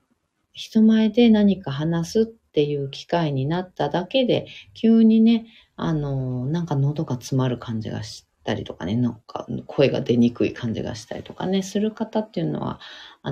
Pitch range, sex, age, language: 130-215 Hz, female, 40-59, Japanese